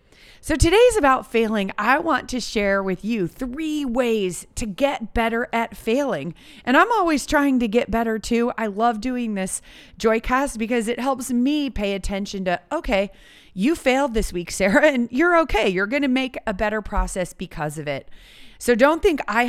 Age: 30-49